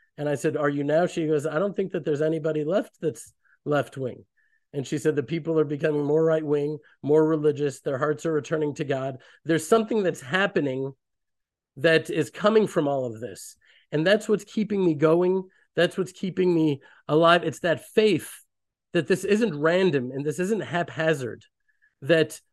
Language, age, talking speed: English, 40-59, 185 wpm